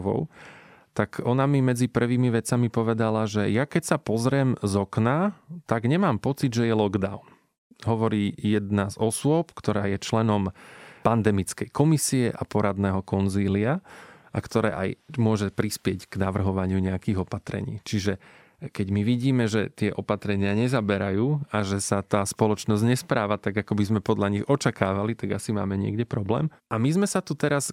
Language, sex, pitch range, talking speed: Slovak, male, 105-125 Hz, 160 wpm